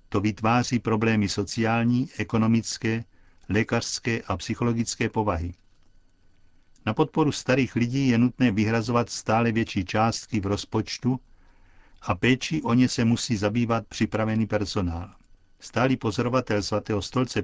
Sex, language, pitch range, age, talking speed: male, Czech, 100-120 Hz, 50-69, 115 wpm